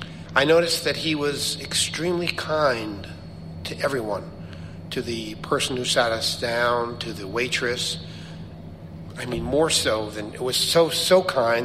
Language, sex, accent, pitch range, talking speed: English, male, American, 85-125 Hz, 150 wpm